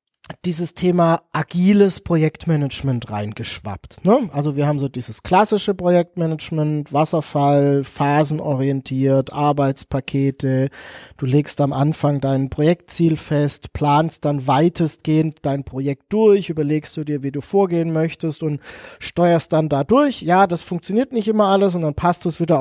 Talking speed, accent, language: 140 wpm, German, German